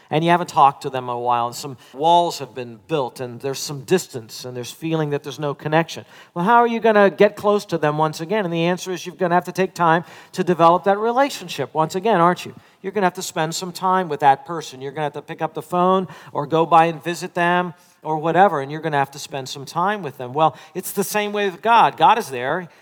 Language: English